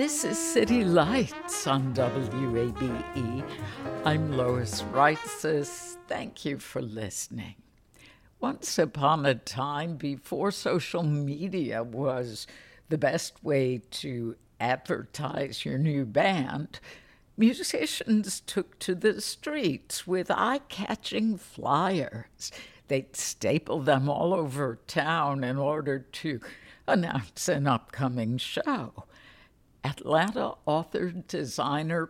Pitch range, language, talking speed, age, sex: 135-180 Hz, English, 100 wpm, 60-79, female